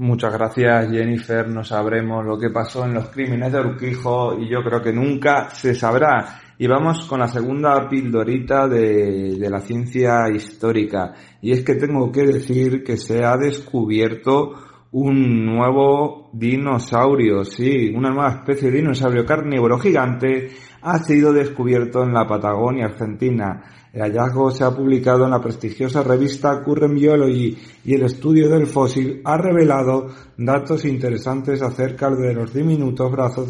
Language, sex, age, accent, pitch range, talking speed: Spanish, male, 30-49, Spanish, 120-140 Hz, 150 wpm